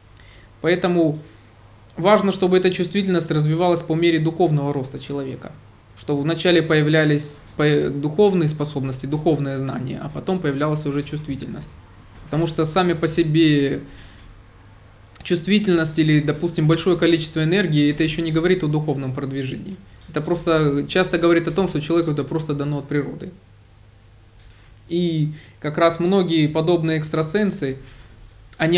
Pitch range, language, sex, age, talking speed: 140-170 Hz, Russian, male, 20-39, 125 wpm